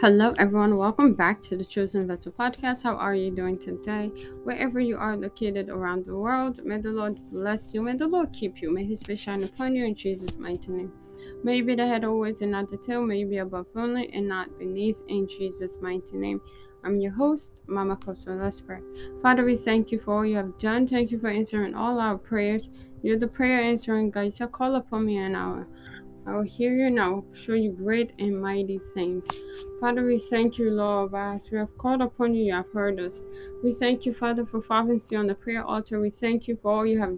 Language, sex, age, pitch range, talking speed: English, female, 20-39, 195-235 Hz, 225 wpm